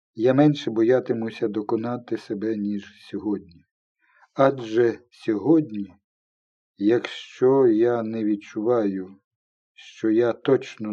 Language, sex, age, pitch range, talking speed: Ukrainian, male, 50-69, 105-155 Hz, 90 wpm